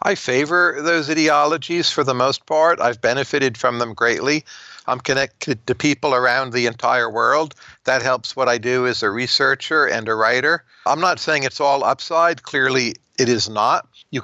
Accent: American